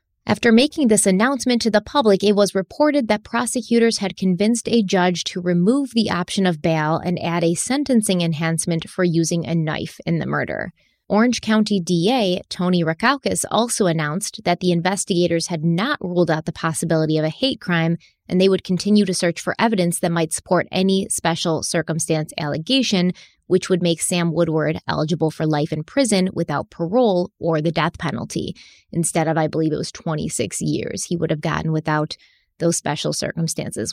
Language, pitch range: English, 165-205 Hz